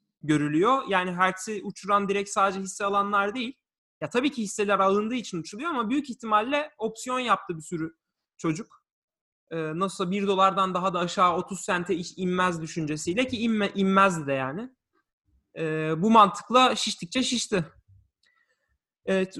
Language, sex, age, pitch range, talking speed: Turkish, male, 30-49, 165-215 Hz, 140 wpm